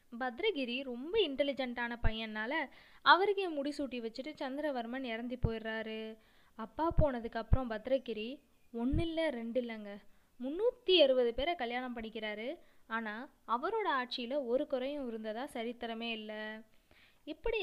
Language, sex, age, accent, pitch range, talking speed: Tamil, female, 20-39, native, 230-290 Hz, 100 wpm